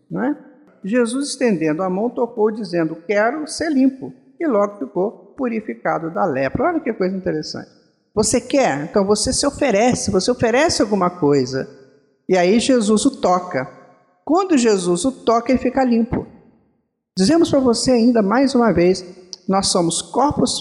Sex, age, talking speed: male, 50-69, 150 wpm